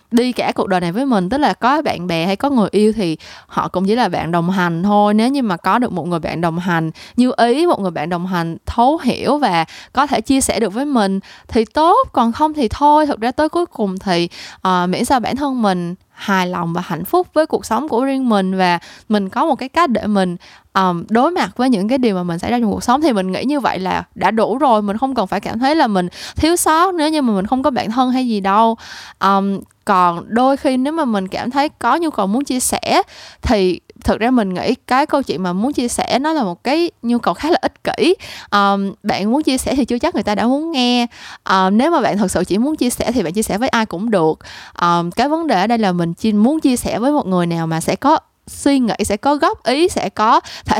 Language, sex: Vietnamese, female